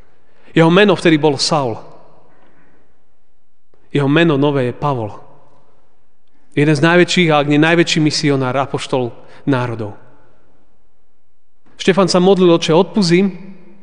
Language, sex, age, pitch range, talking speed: Slovak, male, 30-49, 140-175 Hz, 110 wpm